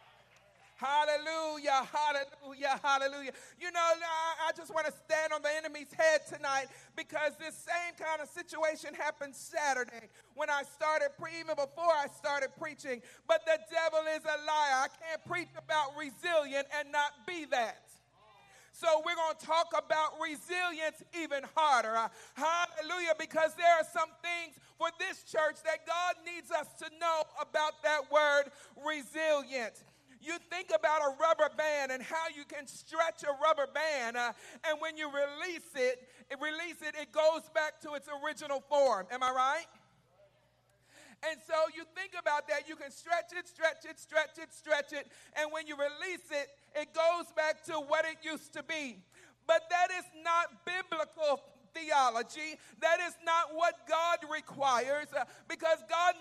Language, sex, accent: English, male, American